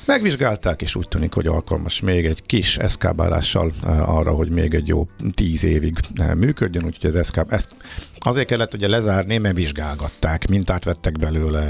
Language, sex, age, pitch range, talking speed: Hungarian, male, 50-69, 80-100 Hz, 155 wpm